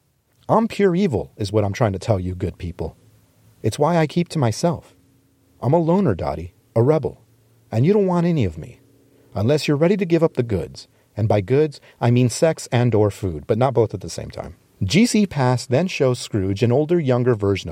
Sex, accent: male, American